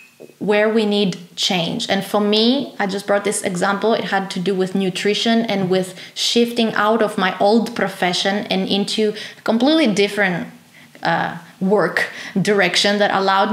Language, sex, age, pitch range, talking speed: English, female, 20-39, 185-215 Hz, 160 wpm